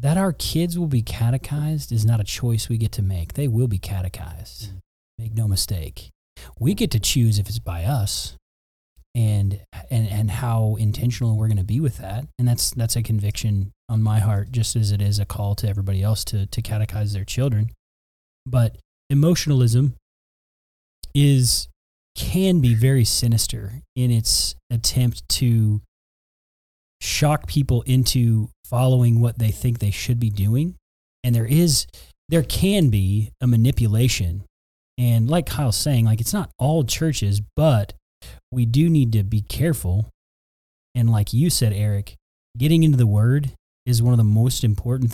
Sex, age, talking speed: male, 30-49, 160 wpm